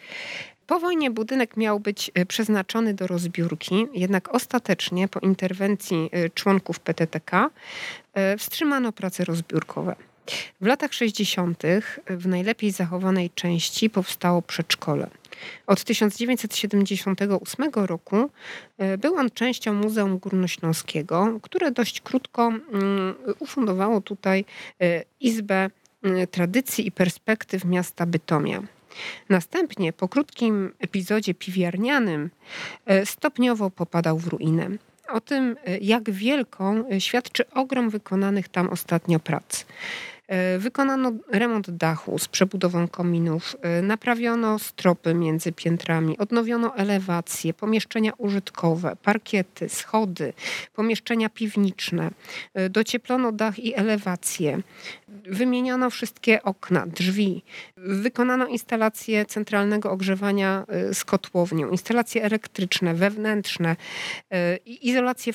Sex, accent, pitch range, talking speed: female, native, 180-225 Hz, 90 wpm